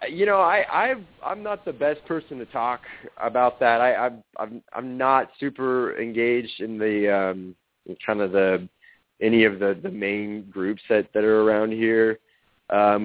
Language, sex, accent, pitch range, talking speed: English, male, American, 95-115 Hz, 175 wpm